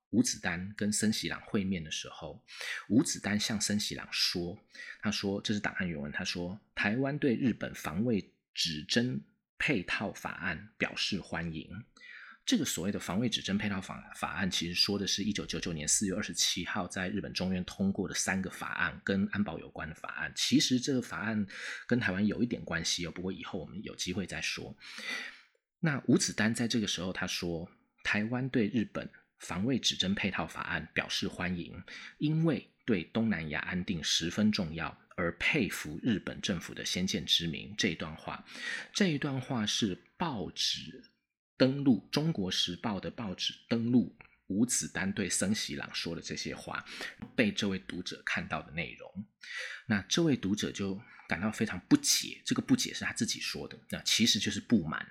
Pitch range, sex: 90-115 Hz, male